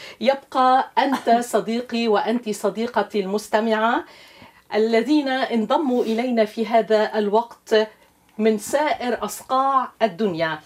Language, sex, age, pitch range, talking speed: Arabic, female, 40-59, 205-260 Hz, 90 wpm